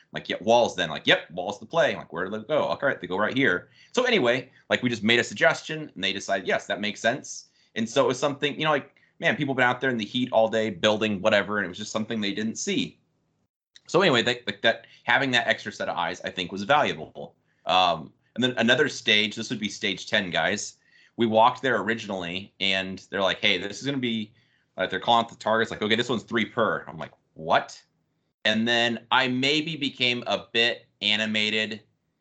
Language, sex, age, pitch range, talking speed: English, male, 30-49, 100-120 Hz, 235 wpm